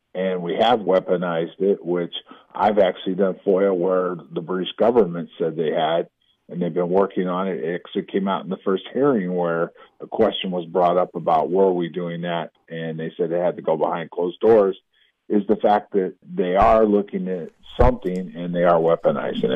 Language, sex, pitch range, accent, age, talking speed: English, male, 90-105 Hz, American, 50-69, 195 wpm